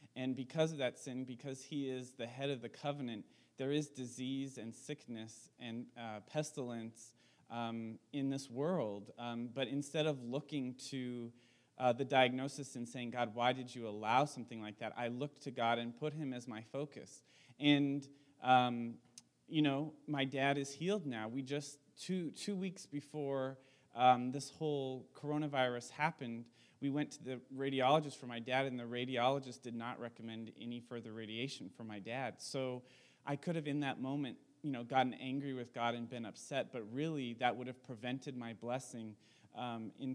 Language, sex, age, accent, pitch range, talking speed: English, male, 30-49, American, 120-140 Hz, 180 wpm